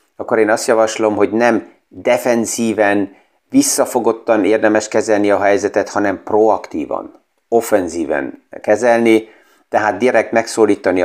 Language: Hungarian